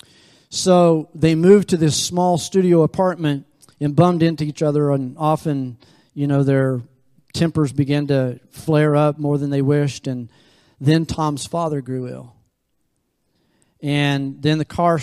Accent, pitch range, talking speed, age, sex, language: American, 135-160 Hz, 150 wpm, 40-59, male, English